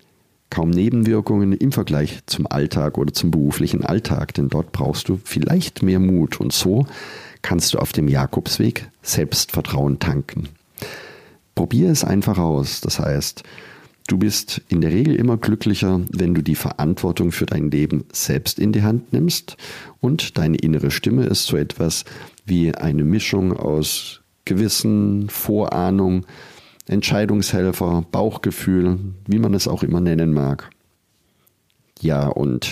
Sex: male